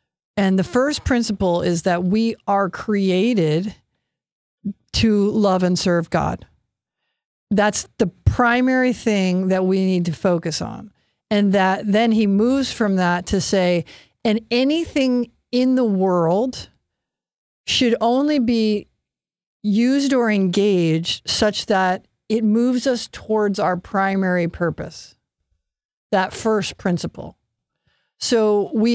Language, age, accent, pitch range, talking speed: English, 50-69, American, 190-235 Hz, 120 wpm